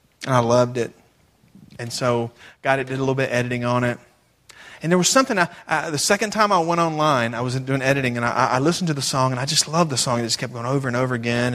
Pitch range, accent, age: 120-150 Hz, American, 30-49